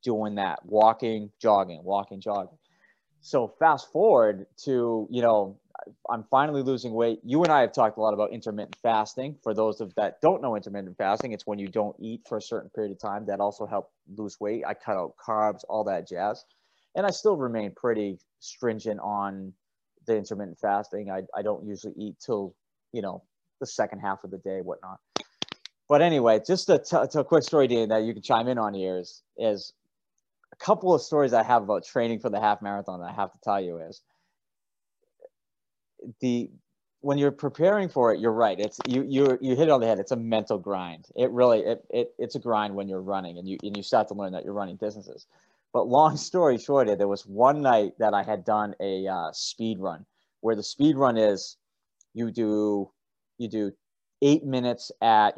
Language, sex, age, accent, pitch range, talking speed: English, male, 30-49, American, 100-125 Hz, 205 wpm